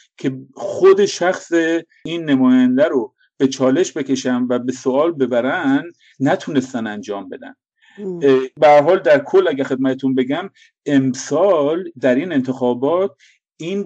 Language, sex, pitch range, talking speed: English, male, 125-145 Hz, 120 wpm